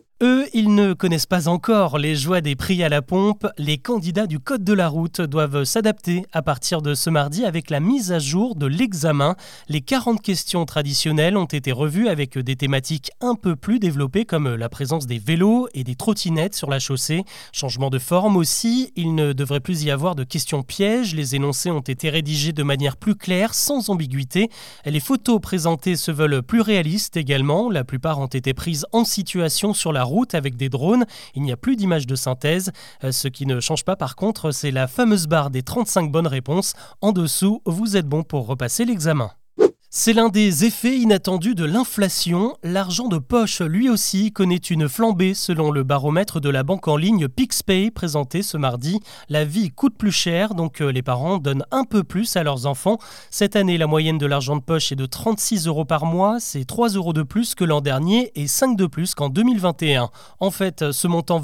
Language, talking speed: French, 205 wpm